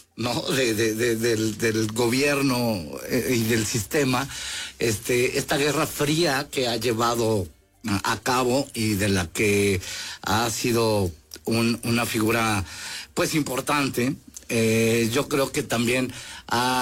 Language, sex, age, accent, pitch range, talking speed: English, male, 50-69, Mexican, 105-130 Hz, 130 wpm